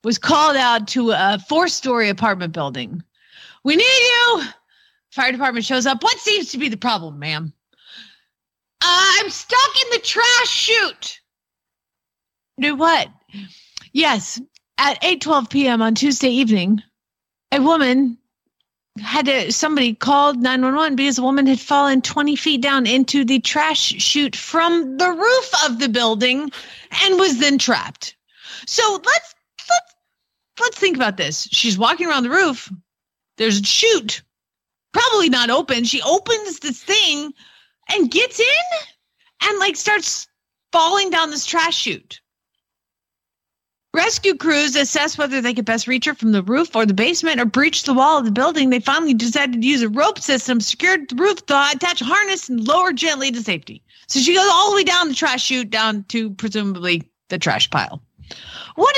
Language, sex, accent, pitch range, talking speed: English, female, American, 230-345 Hz, 160 wpm